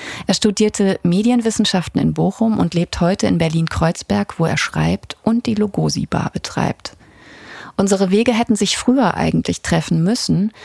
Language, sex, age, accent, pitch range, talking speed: German, female, 30-49, German, 160-210 Hz, 140 wpm